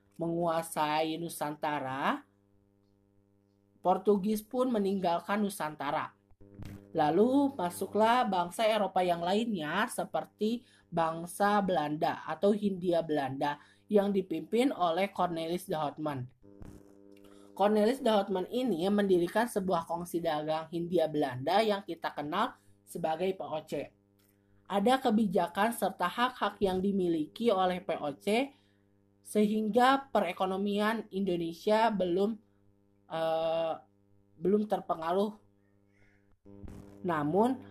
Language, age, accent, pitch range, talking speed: Indonesian, 20-39, native, 125-205 Hz, 90 wpm